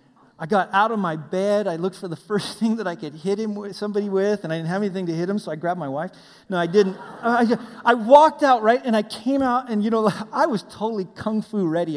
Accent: American